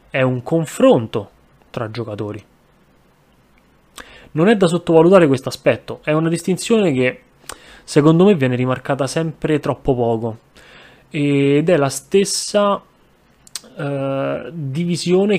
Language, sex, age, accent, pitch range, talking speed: Italian, male, 20-39, native, 125-155 Hz, 105 wpm